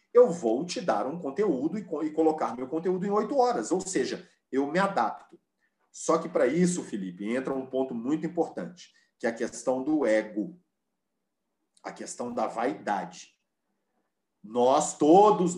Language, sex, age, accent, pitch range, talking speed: Portuguese, male, 40-59, Brazilian, 145-195 Hz, 155 wpm